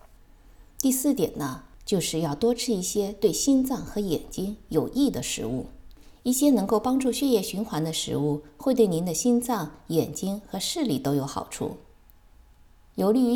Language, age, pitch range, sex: Chinese, 50-69, 150-245 Hz, female